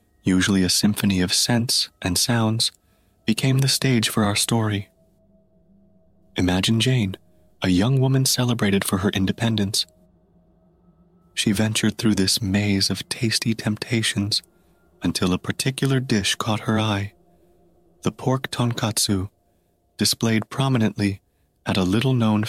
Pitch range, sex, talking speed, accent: 95-115 Hz, male, 120 wpm, American